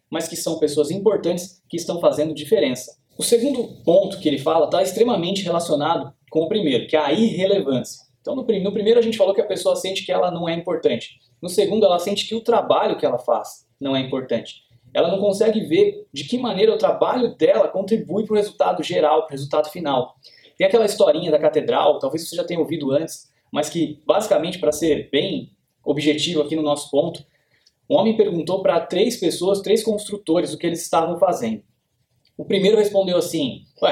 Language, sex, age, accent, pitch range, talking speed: Portuguese, male, 20-39, Brazilian, 150-200 Hz, 200 wpm